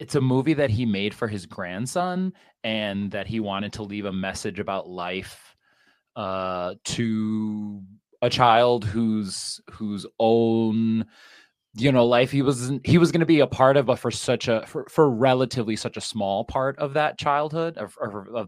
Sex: male